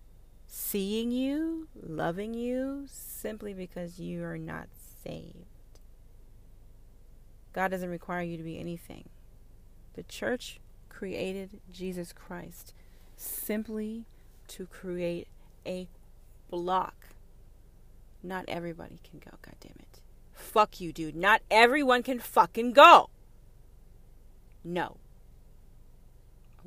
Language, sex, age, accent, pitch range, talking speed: English, female, 30-49, American, 160-190 Hz, 100 wpm